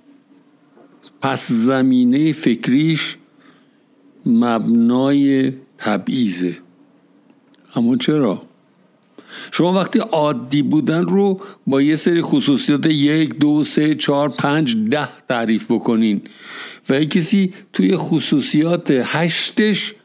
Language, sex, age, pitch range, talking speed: Persian, male, 60-79, 120-185 Hz, 85 wpm